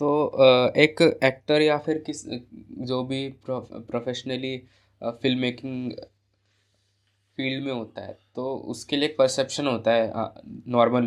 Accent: native